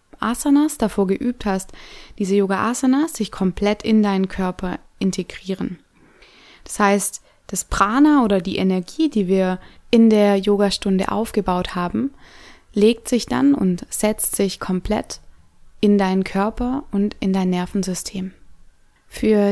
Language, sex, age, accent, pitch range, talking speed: German, female, 20-39, German, 185-215 Hz, 125 wpm